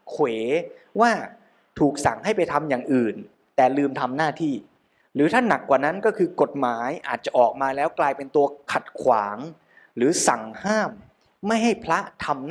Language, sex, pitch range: Thai, male, 140-195 Hz